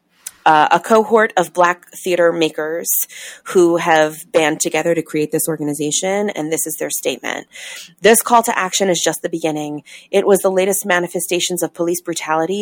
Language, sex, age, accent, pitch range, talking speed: English, female, 30-49, American, 165-195 Hz, 170 wpm